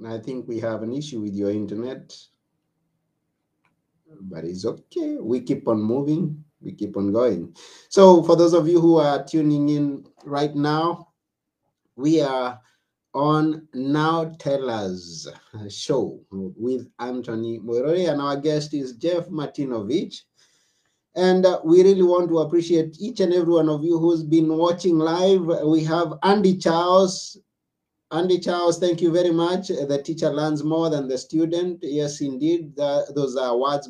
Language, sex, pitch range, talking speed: English, male, 135-170 Hz, 150 wpm